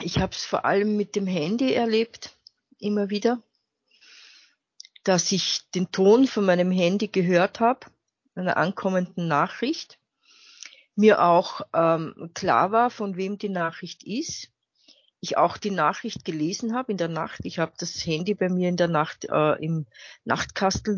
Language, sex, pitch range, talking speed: German, female, 160-205 Hz, 155 wpm